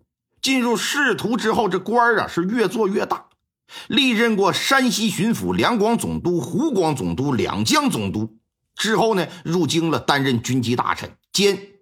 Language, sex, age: Chinese, male, 50-69